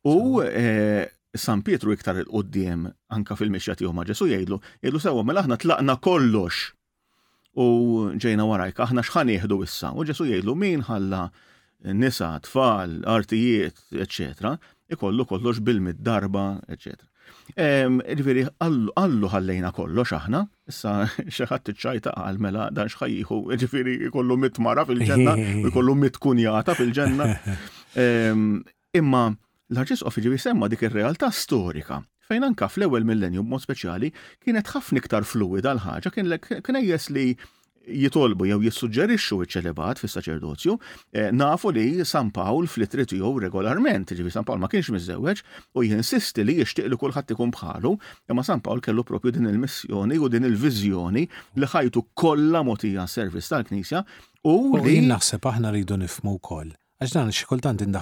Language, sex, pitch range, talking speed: English, male, 100-130 Hz, 110 wpm